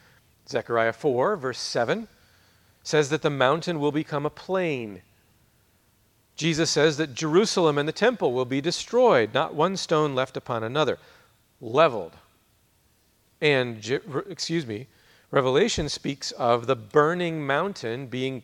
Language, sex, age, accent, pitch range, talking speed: English, male, 40-59, American, 110-160 Hz, 125 wpm